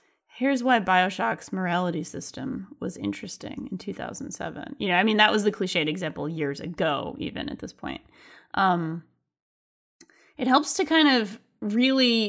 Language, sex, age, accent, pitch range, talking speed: English, female, 20-39, American, 175-230 Hz, 150 wpm